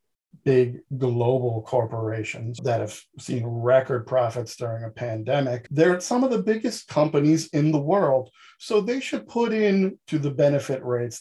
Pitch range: 120-145 Hz